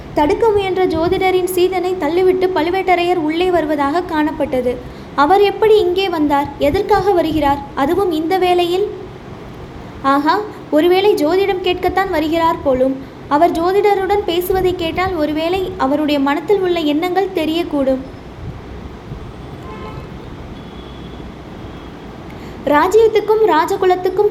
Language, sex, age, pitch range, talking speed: Tamil, female, 20-39, 300-370 Hz, 70 wpm